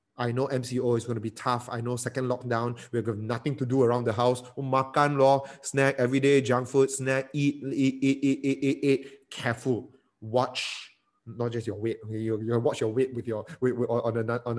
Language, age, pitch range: English, 20-39, 110-140 Hz